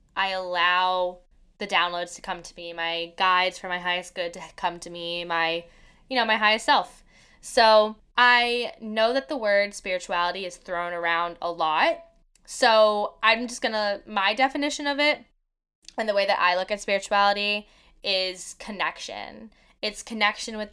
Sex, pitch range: female, 180-225 Hz